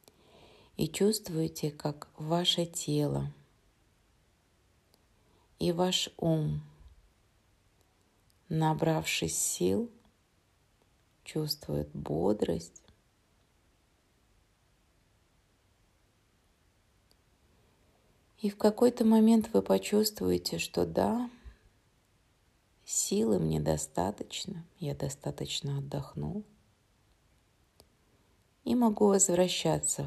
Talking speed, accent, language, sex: 60 wpm, native, Russian, female